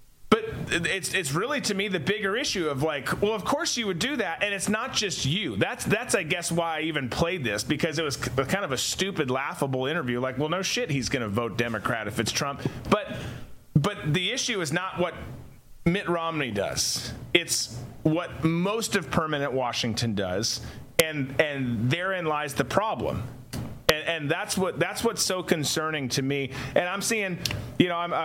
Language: English